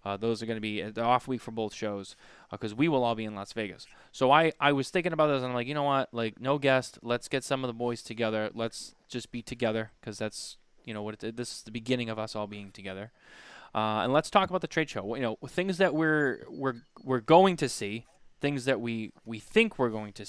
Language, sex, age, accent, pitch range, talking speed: English, male, 20-39, American, 105-135 Hz, 265 wpm